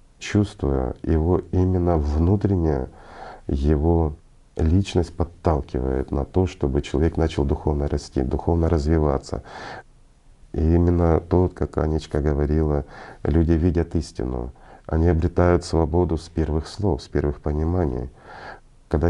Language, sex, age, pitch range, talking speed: Russian, male, 40-59, 75-90 Hz, 110 wpm